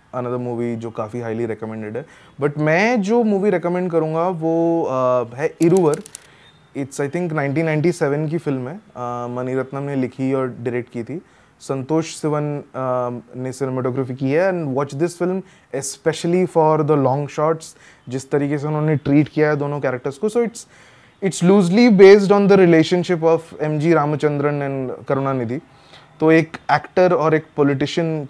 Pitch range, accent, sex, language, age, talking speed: 130-170 Hz, Indian, male, English, 20-39, 125 wpm